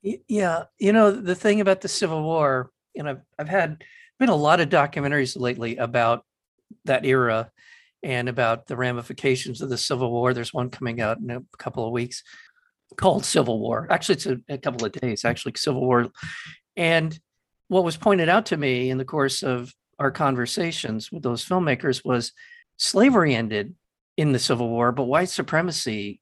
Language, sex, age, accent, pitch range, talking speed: English, male, 50-69, American, 125-170 Hz, 180 wpm